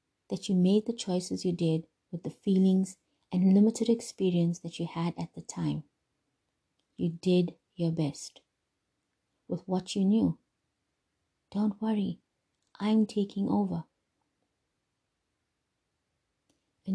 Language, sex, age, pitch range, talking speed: English, female, 30-49, 170-210 Hz, 115 wpm